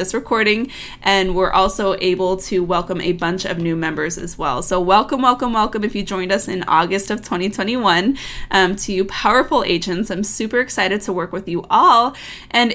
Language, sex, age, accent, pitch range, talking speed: English, female, 20-39, American, 190-240 Hz, 195 wpm